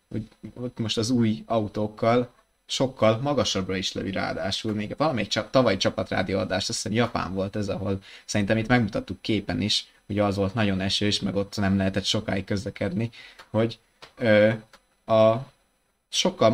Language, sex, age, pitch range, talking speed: Hungarian, male, 20-39, 105-120 Hz, 150 wpm